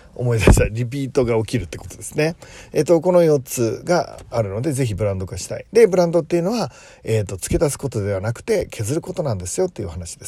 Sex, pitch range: male, 105-165 Hz